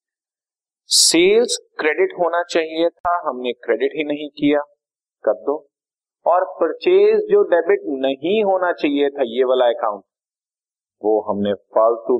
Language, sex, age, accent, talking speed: Hindi, male, 30-49, native, 130 wpm